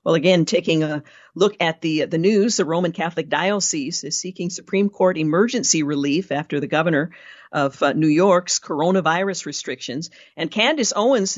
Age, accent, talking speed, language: 50-69, American, 165 wpm, English